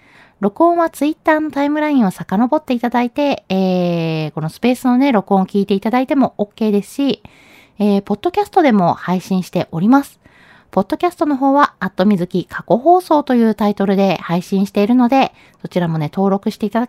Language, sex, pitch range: Japanese, female, 195-280 Hz